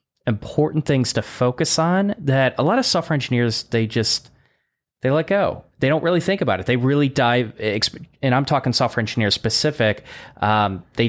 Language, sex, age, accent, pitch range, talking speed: English, male, 20-39, American, 105-140 Hz, 180 wpm